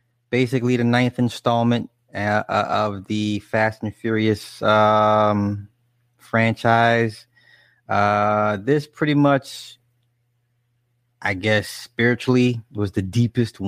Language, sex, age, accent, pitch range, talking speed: English, male, 20-39, American, 115-130 Hz, 90 wpm